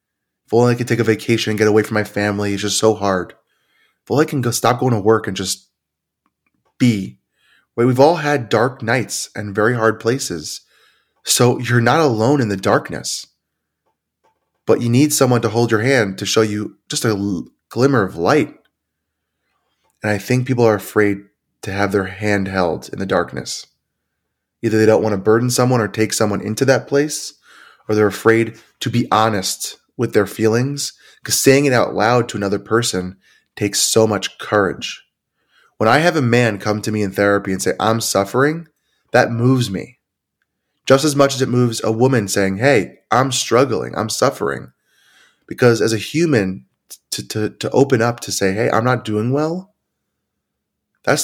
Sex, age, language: male, 20-39, English